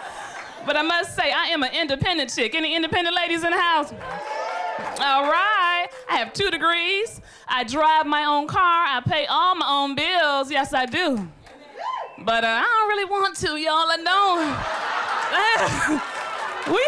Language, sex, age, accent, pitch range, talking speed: English, female, 20-39, American, 270-355 Hz, 165 wpm